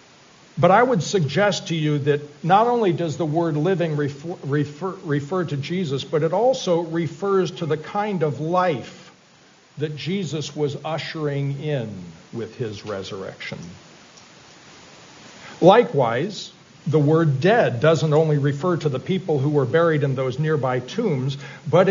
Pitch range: 145-180 Hz